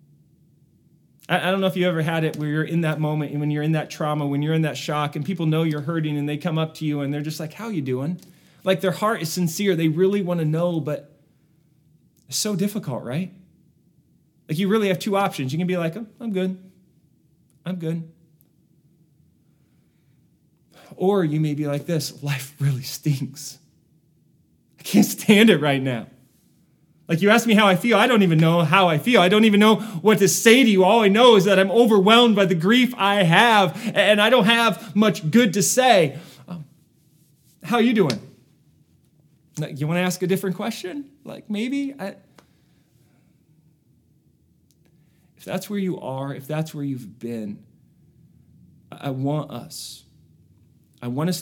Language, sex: English, male